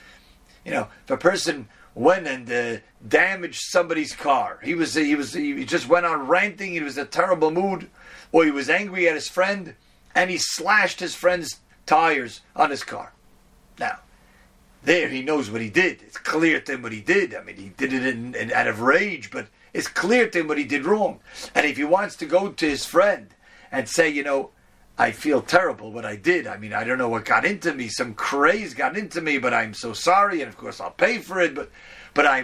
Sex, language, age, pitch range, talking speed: male, English, 40-59, 135-180 Hz, 220 wpm